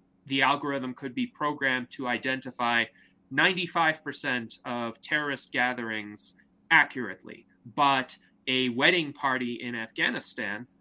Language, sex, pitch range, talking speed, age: English, male, 115-145 Hz, 100 wpm, 30-49